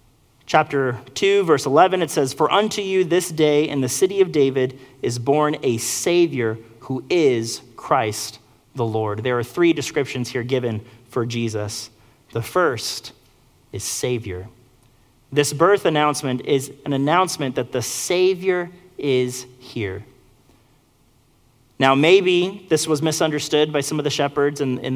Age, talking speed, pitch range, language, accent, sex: 30-49, 145 wpm, 125-150 Hz, English, American, male